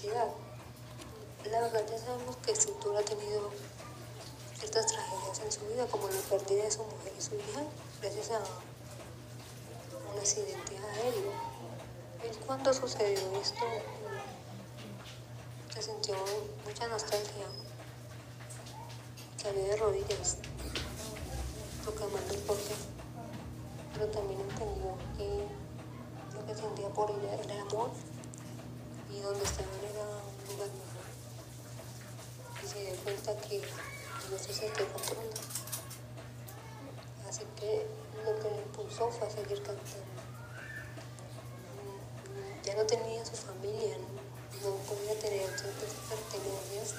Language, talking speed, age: Spanish, 115 wpm, 20-39